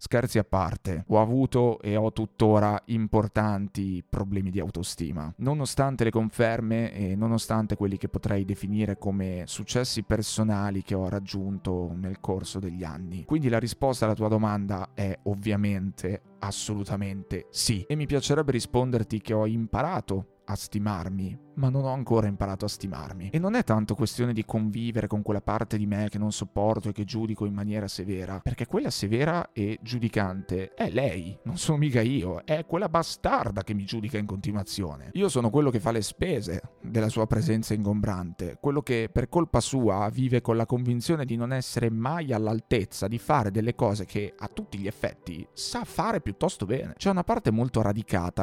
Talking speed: 170 wpm